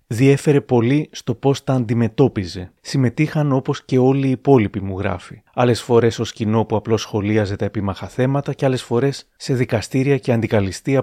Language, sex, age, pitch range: Greek, male, 30-49, 105-135 Hz